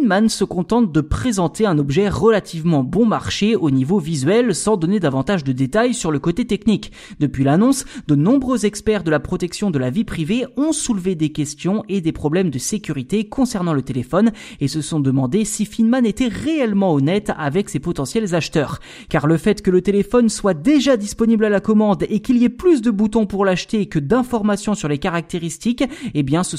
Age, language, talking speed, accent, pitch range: 20-39, French, 200 wpm, French, 160-235 Hz